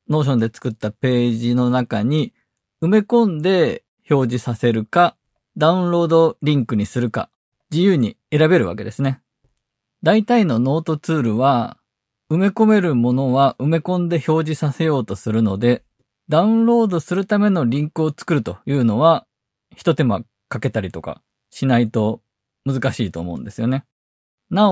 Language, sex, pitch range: Japanese, male, 120-175 Hz